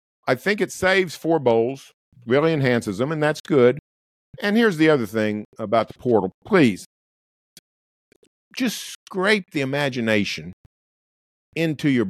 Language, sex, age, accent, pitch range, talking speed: English, male, 50-69, American, 120-175 Hz, 135 wpm